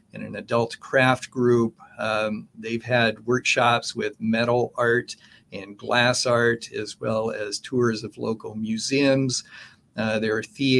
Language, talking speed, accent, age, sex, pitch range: English, 140 wpm, American, 50-69, male, 110-125 Hz